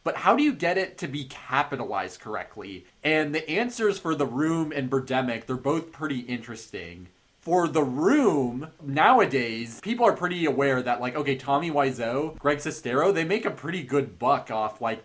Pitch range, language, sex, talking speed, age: 125-160 Hz, English, male, 180 wpm, 30-49